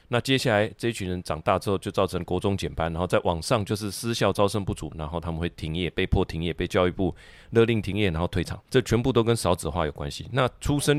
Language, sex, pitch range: Chinese, male, 85-110 Hz